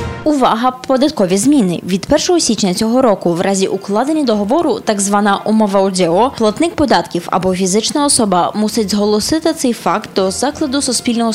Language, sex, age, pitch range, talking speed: Polish, female, 20-39, 205-290 Hz, 150 wpm